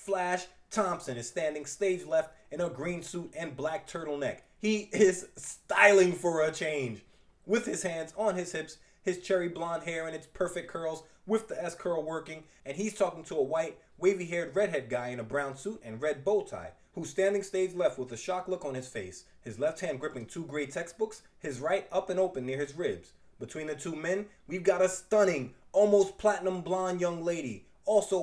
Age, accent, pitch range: 30-49, American, 155-200 Hz